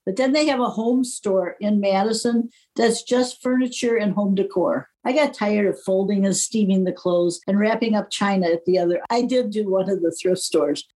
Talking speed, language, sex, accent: 215 wpm, English, female, American